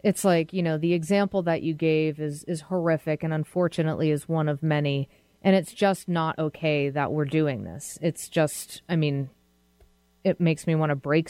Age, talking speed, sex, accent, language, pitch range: 30-49, 195 wpm, female, American, English, 150-180 Hz